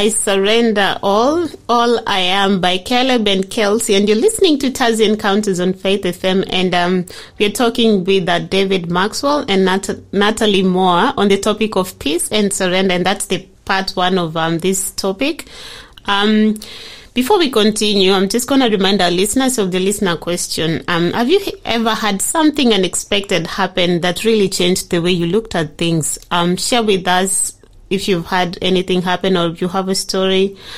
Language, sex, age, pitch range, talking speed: English, female, 30-49, 180-220 Hz, 185 wpm